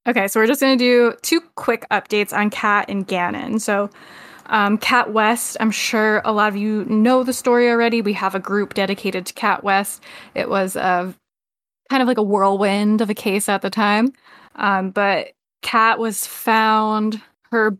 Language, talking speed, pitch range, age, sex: English, 185 wpm, 195-235 Hz, 10-29, female